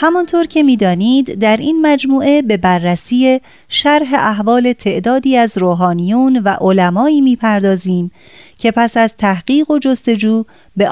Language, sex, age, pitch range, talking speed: Persian, female, 30-49, 195-260 Hz, 125 wpm